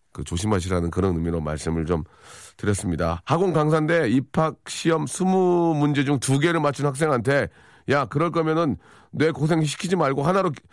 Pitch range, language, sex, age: 110-160 Hz, Korean, male, 40-59